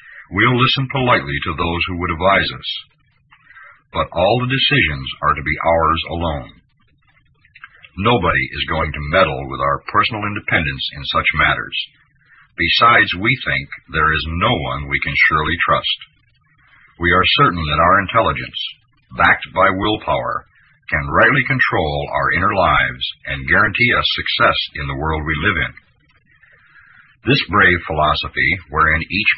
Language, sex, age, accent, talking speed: English, male, 60-79, American, 145 wpm